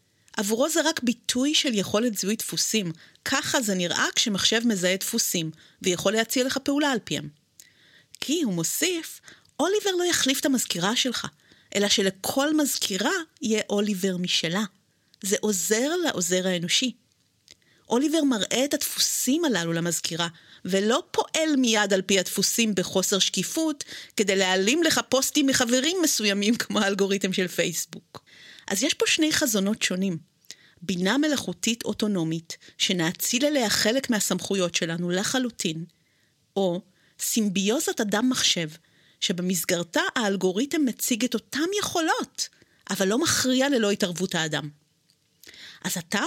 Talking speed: 125 wpm